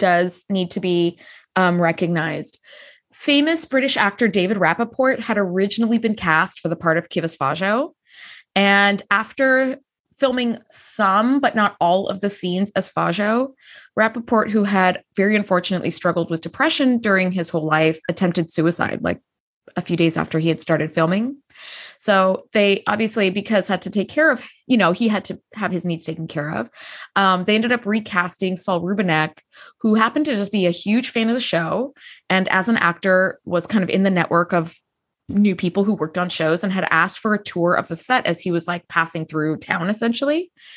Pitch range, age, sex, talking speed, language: 175-220 Hz, 20-39, female, 190 wpm, English